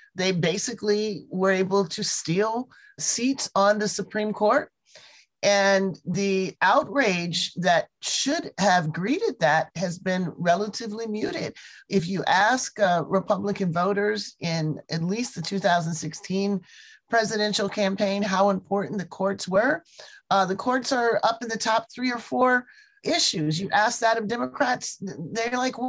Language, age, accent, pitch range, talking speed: English, 30-49, American, 165-215 Hz, 140 wpm